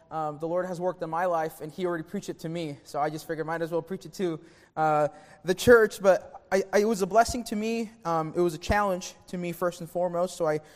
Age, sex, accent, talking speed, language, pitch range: 20-39, male, American, 280 wpm, English, 170-210 Hz